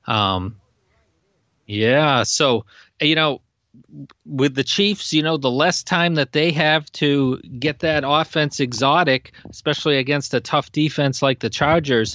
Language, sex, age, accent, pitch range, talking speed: English, male, 40-59, American, 125-150 Hz, 145 wpm